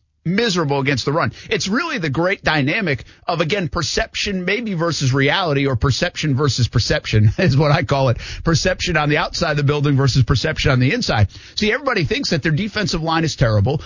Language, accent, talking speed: English, American, 195 wpm